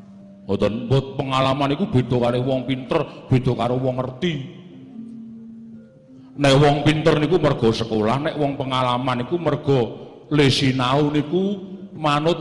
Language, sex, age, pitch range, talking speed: Indonesian, male, 40-59, 120-170 Hz, 140 wpm